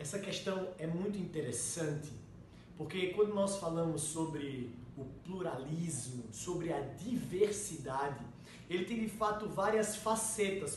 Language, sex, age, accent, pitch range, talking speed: Portuguese, male, 20-39, Brazilian, 160-210 Hz, 115 wpm